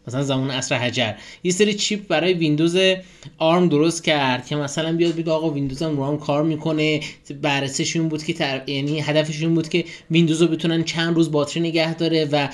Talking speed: 185 wpm